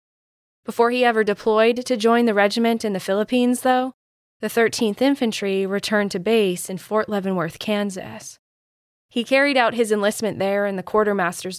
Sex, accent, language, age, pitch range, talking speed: female, American, English, 10-29, 185-230 Hz, 160 wpm